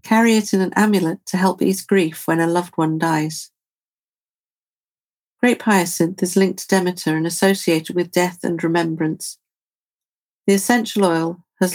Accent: British